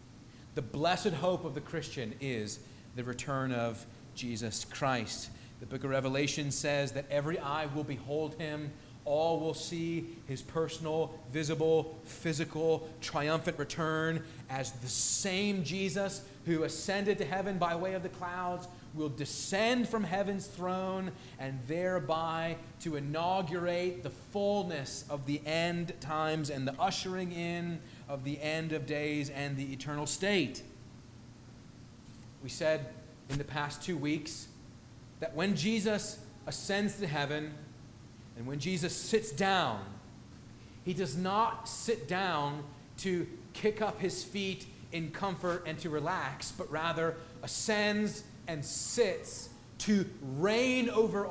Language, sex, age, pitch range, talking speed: English, male, 30-49, 130-180 Hz, 135 wpm